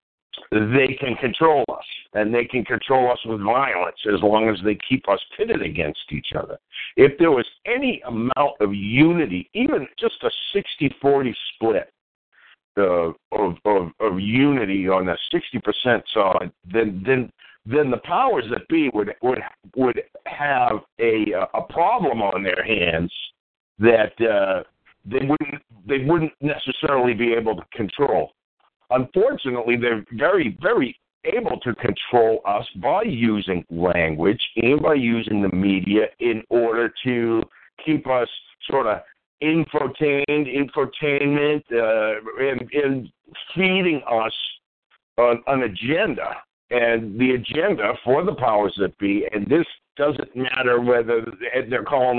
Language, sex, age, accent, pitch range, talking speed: English, male, 50-69, American, 110-145 Hz, 140 wpm